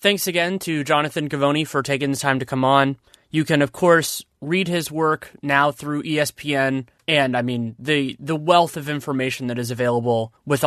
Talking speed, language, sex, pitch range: 190 wpm, English, male, 120-145 Hz